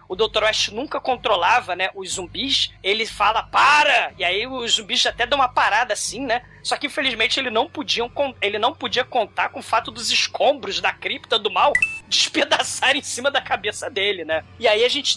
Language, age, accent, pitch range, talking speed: Portuguese, 20-39, Brazilian, 210-290 Hz, 205 wpm